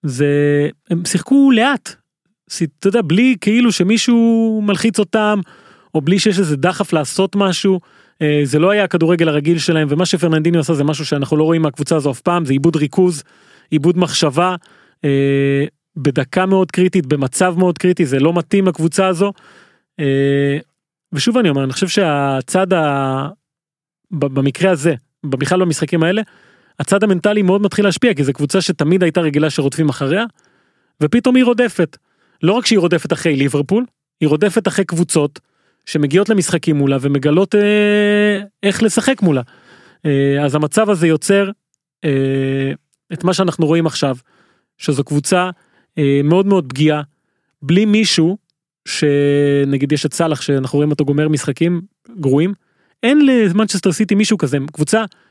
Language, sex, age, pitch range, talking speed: Hebrew, male, 30-49, 145-195 Hz, 145 wpm